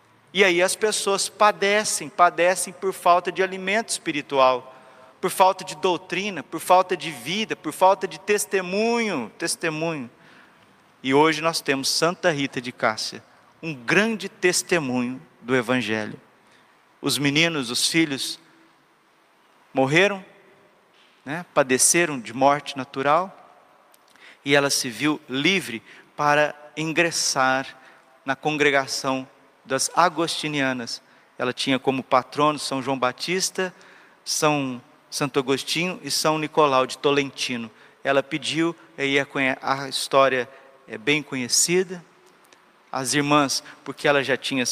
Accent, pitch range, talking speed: Brazilian, 135-175 Hz, 115 wpm